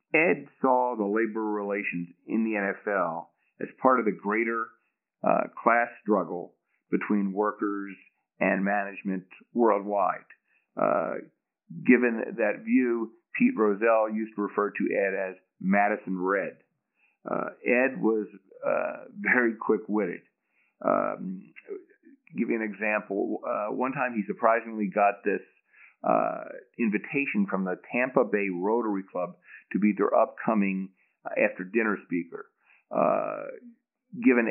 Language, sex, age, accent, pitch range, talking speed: English, male, 50-69, American, 100-125 Hz, 120 wpm